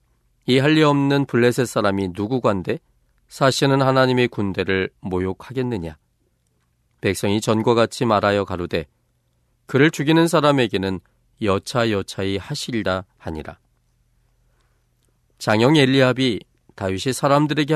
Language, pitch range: Korean, 95-125 Hz